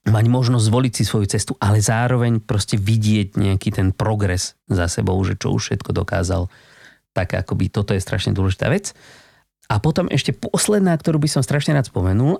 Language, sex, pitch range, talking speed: Slovak, male, 100-130 Hz, 180 wpm